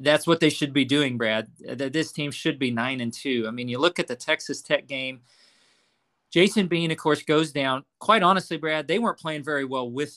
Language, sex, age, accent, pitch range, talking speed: English, male, 40-59, American, 130-180 Hz, 230 wpm